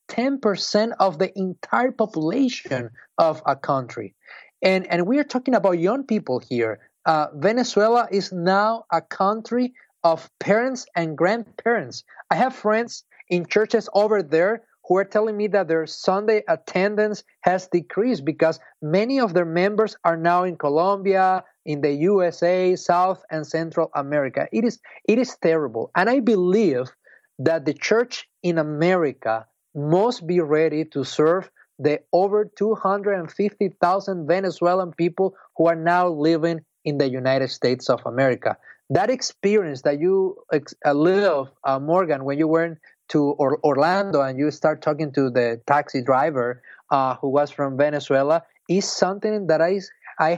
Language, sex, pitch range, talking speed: English, male, 155-205 Hz, 150 wpm